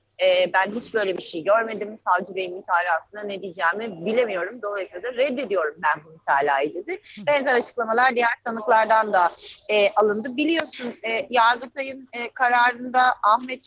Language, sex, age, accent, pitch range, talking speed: German, female, 30-49, Turkish, 190-255 Hz, 120 wpm